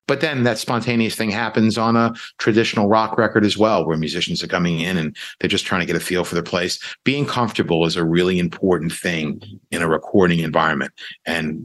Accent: American